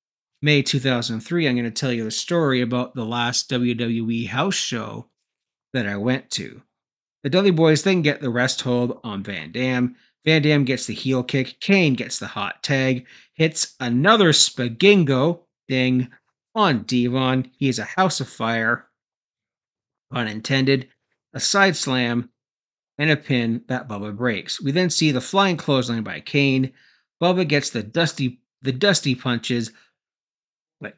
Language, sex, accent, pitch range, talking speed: English, male, American, 120-165 Hz, 155 wpm